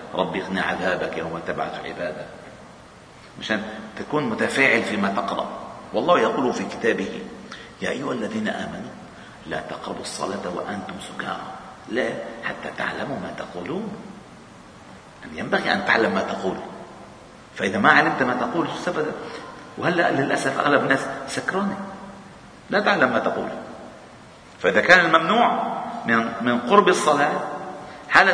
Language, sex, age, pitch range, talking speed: Arabic, male, 50-69, 185-240 Hz, 125 wpm